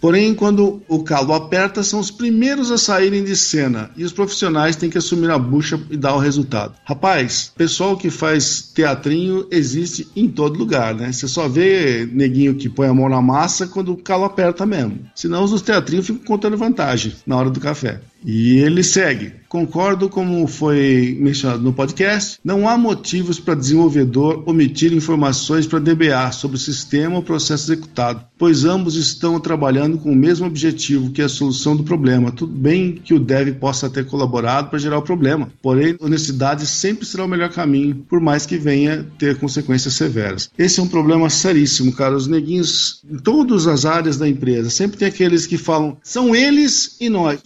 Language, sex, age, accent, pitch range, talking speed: English, male, 50-69, Brazilian, 140-185 Hz, 185 wpm